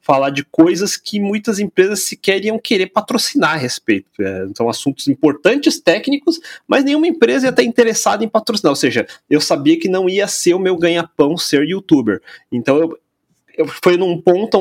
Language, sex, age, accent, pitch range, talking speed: Portuguese, male, 30-49, Brazilian, 130-185 Hz, 175 wpm